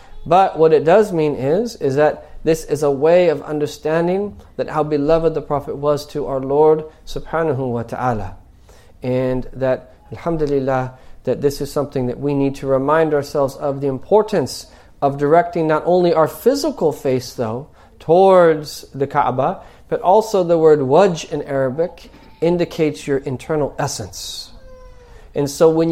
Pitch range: 135-160 Hz